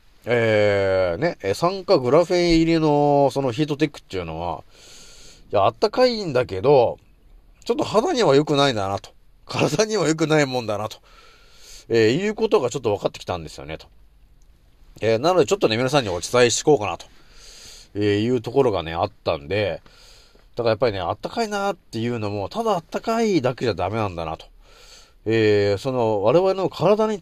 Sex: male